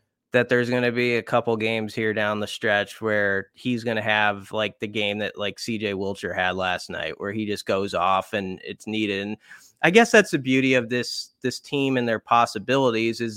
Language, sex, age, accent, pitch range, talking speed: English, male, 30-49, American, 105-125 Hz, 220 wpm